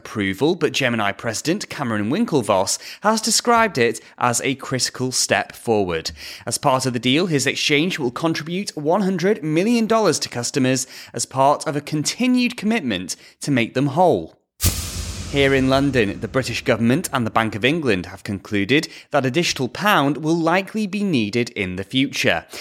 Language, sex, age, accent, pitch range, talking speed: English, male, 30-49, British, 115-175 Hz, 160 wpm